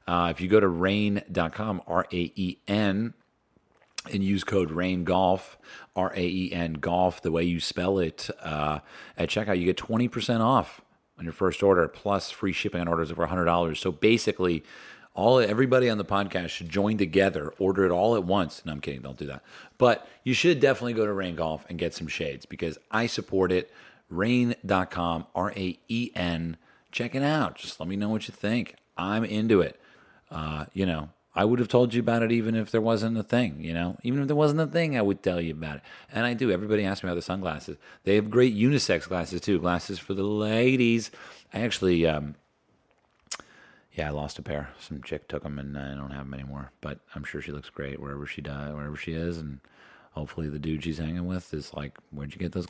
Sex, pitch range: male, 80-110 Hz